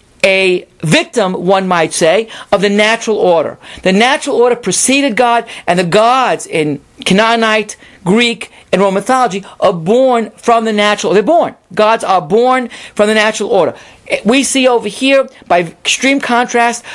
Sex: male